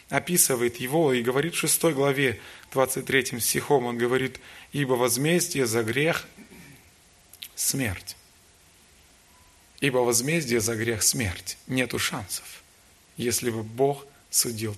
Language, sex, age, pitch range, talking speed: Russian, male, 20-39, 110-145 Hz, 120 wpm